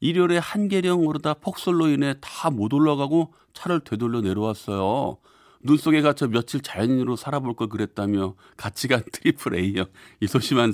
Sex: male